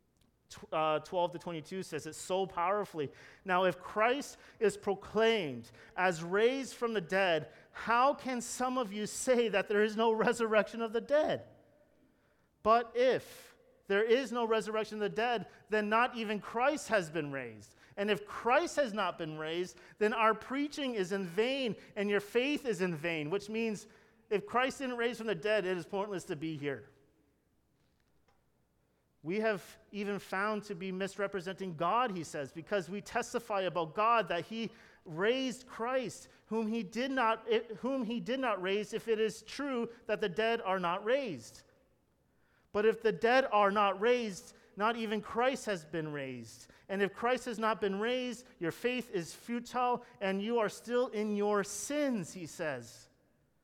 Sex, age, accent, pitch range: male, 40-59, American, 180-230 Hz